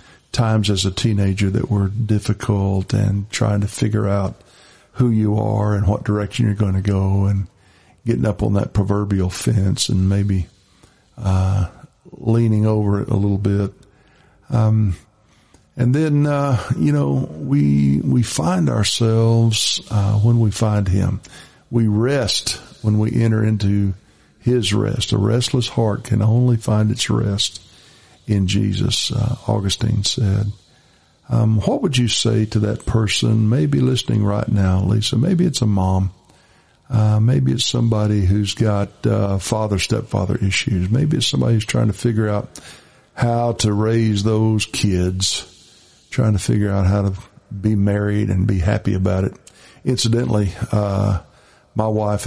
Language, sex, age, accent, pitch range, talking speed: English, male, 50-69, American, 100-115 Hz, 150 wpm